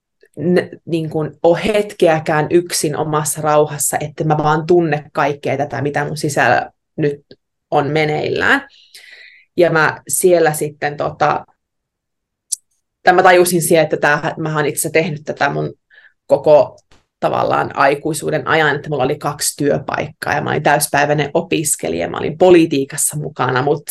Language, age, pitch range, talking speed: Finnish, 20-39, 150-175 Hz, 130 wpm